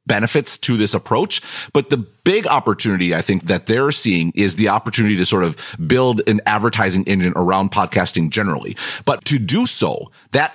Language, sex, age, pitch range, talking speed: English, male, 30-49, 100-135 Hz, 175 wpm